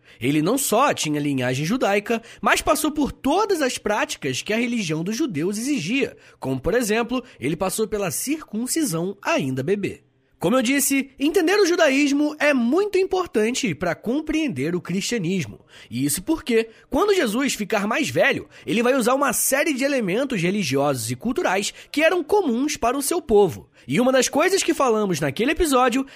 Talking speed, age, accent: 165 wpm, 20-39, Brazilian